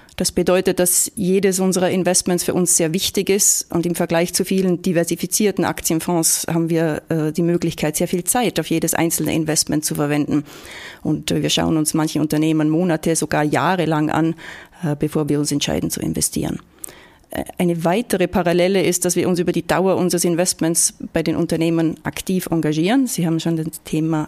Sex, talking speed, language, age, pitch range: female, 180 wpm, German, 30-49, 160-180 Hz